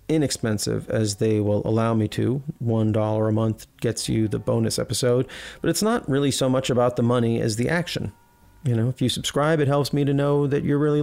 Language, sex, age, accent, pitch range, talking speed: English, male, 40-59, American, 120-150 Hz, 225 wpm